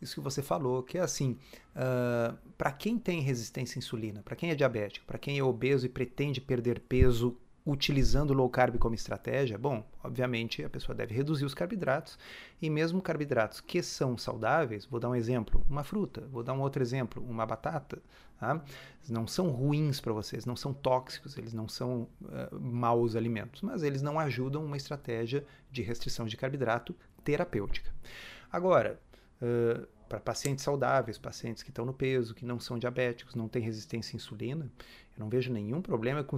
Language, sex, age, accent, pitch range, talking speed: Portuguese, male, 30-49, Brazilian, 120-150 Hz, 180 wpm